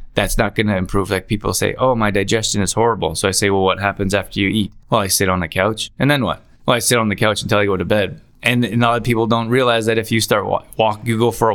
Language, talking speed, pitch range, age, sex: English, 310 wpm, 100-120 Hz, 20-39, male